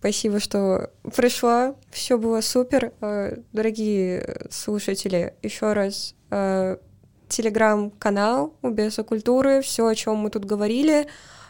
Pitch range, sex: 180-220 Hz, female